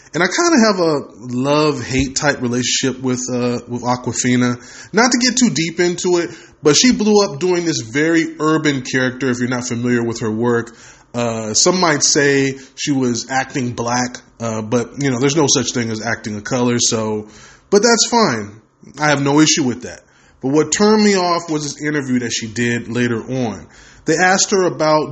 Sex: male